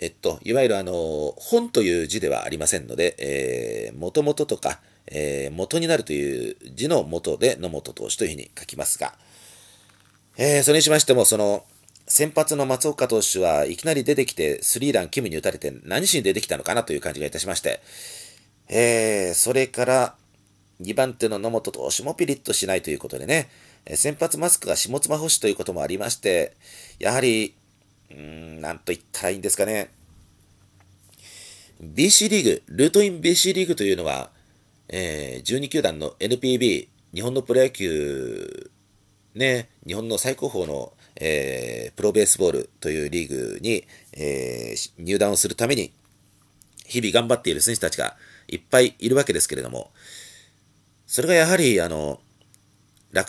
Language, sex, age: Japanese, male, 40-59